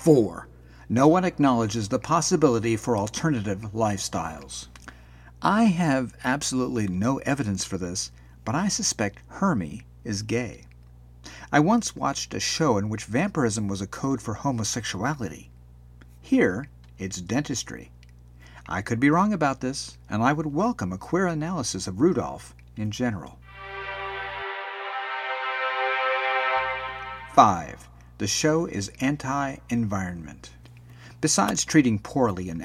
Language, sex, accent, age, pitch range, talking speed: English, male, American, 50-69, 90-135 Hz, 120 wpm